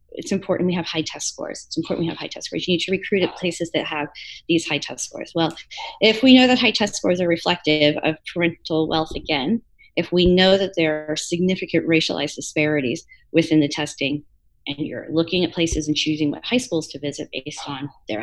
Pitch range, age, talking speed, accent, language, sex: 150-200 Hz, 30-49, 220 wpm, American, English, female